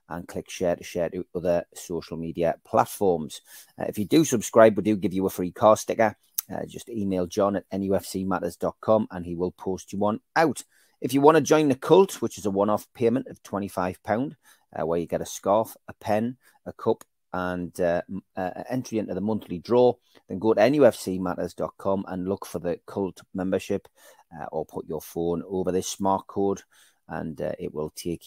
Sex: male